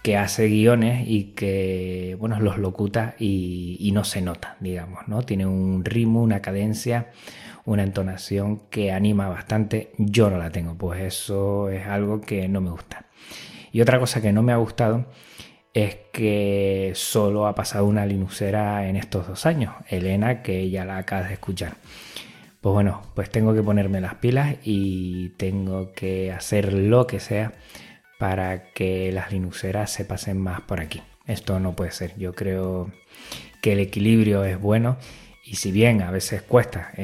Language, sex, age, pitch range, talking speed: Spanish, male, 20-39, 95-110 Hz, 170 wpm